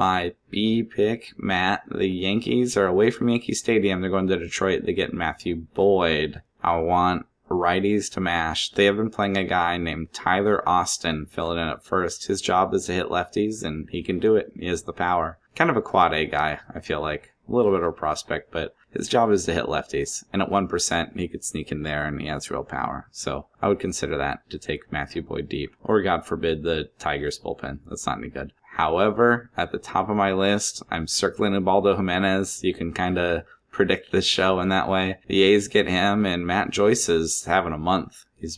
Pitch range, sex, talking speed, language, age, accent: 80-100 Hz, male, 220 wpm, English, 20-39, American